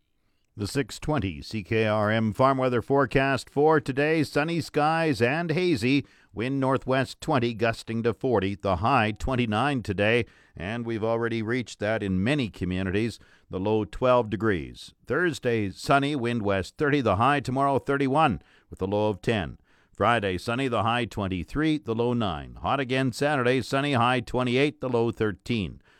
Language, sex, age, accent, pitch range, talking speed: English, male, 50-69, American, 105-135 Hz, 150 wpm